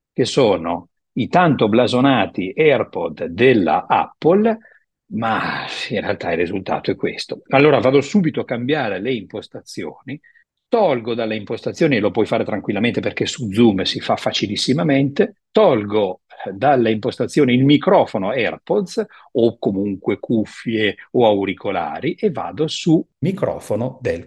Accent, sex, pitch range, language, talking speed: native, male, 120-190 Hz, Italian, 130 wpm